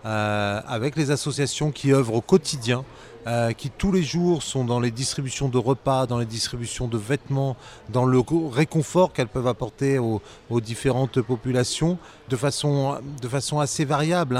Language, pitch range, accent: French, 120-150 Hz, French